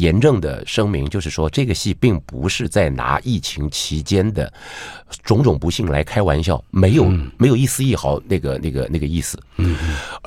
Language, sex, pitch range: Chinese, male, 80-125 Hz